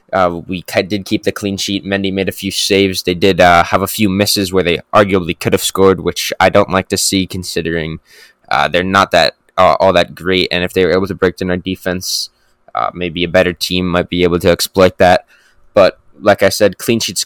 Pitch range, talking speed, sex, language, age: 90-105 Hz, 235 wpm, male, English, 10-29